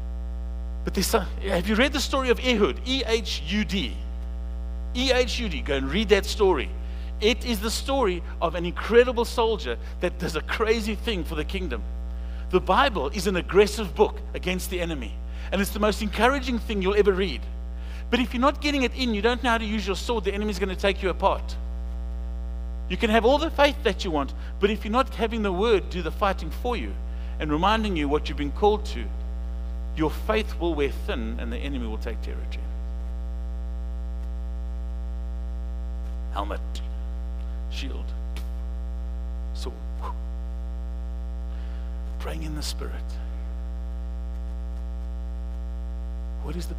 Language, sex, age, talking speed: English, male, 50-69, 155 wpm